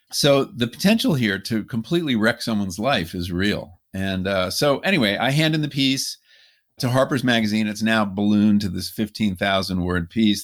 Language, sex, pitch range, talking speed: English, male, 95-115 Hz, 180 wpm